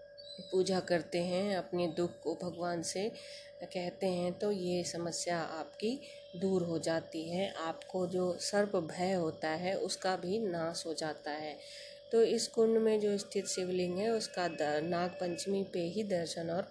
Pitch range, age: 170-200 Hz, 20-39